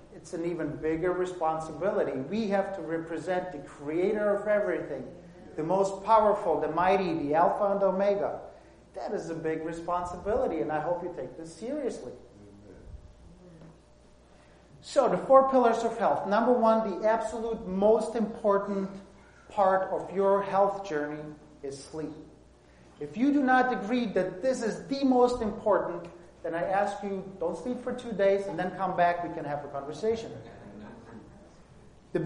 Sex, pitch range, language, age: male, 175-220 Hz, English, 40-59